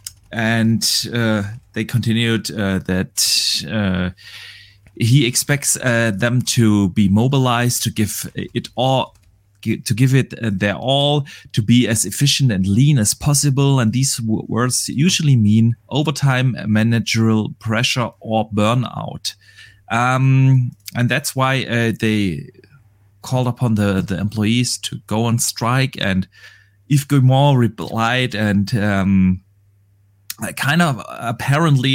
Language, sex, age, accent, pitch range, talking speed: English, male, 30-49, German, 100-130 Hz, 120 wpm